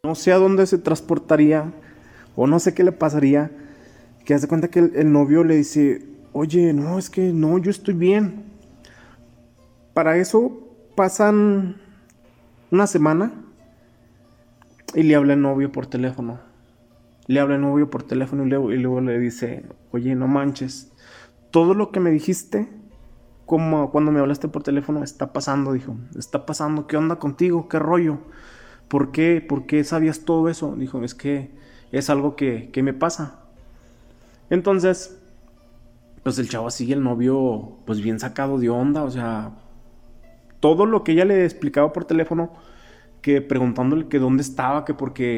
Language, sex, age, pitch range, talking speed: Spanish, male, 30-49, 120-160 Hz, 160 wpm